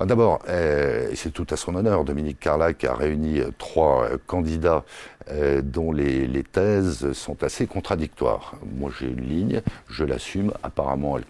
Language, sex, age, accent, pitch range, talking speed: French, male, 60-79, French, 70-90 Hz, 145 wpm